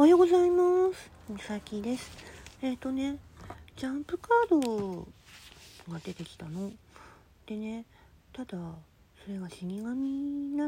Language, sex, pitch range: Japanese, female, 160-230 Hz